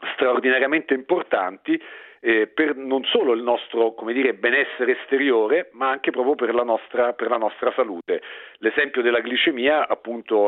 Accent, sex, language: native, male, Italian